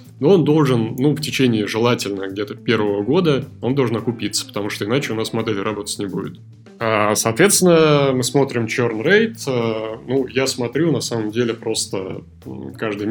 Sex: male